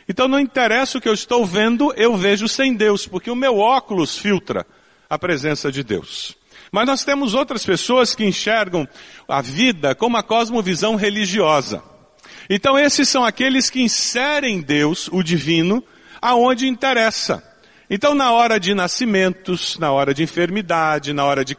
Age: 40-59